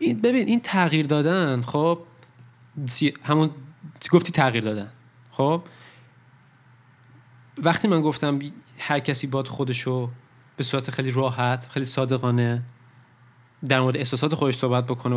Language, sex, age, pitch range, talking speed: Persian, male, 20-39, 120-140 Hz, 120 wpm